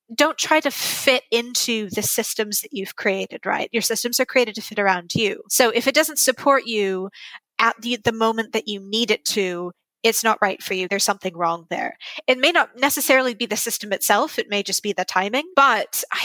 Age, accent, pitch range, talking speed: 20-39, American, 200-245 Hz, 220 wpm